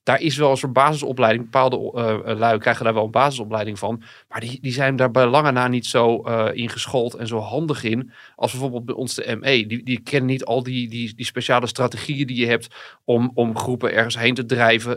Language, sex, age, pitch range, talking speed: Dutch, male, 40-59, 115-135 Hz, 235 wpm